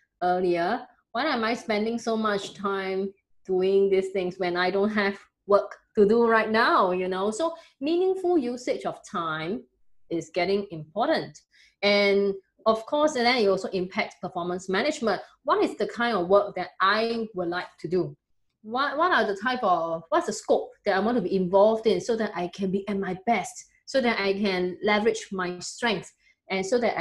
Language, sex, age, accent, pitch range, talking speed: English, female, 20-39, Malaysian, 180-255 Hz, 190 wpm